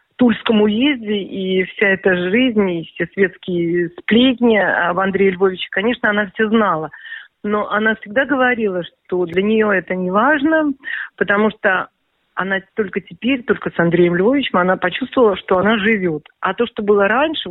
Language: Russian